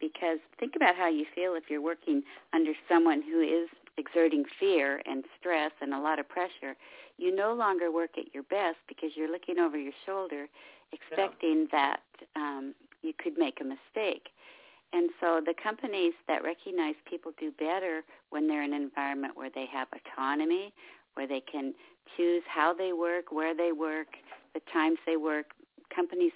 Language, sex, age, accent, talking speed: English, female, 50-69, American, 175 wpm